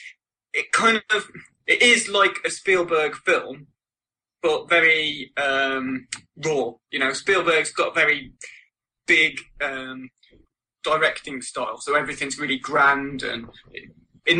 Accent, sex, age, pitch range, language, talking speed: British, male, 20-39, 130-175 Hz, English, 120 wpm